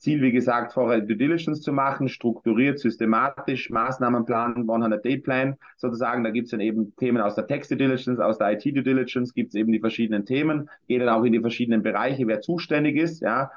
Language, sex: German, male